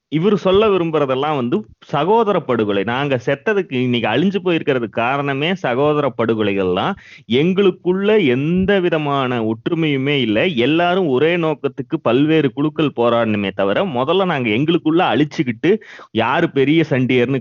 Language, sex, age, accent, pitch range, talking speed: Tamil, male, 30-49, native, 115-155 Hz, 115 wpm